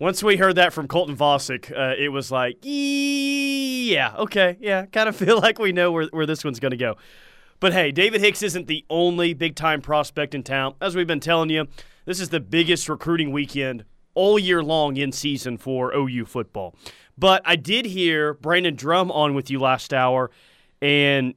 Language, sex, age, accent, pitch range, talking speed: English, male, 30-49, American, 150-215 Hz, 195 wpm